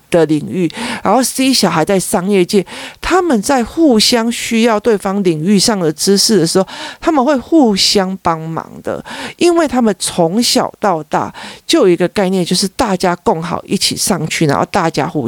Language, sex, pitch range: Chinese, male, 165-225 Hz